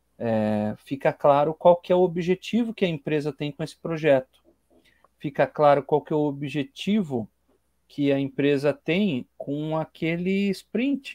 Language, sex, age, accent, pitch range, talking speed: Portuguese, male, 40-59, Brazilian, 140-195 Hz, 150 wpm